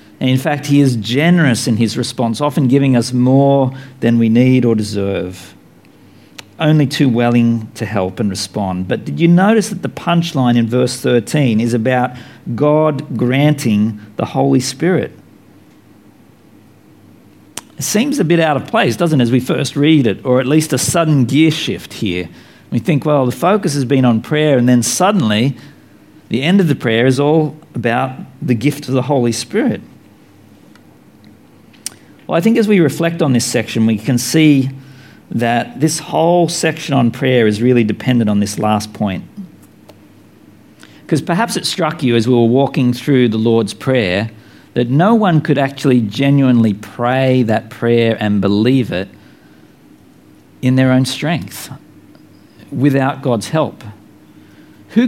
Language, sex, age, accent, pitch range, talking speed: English, male, 50-69, Australian, 115-150 Hz, 160 wpm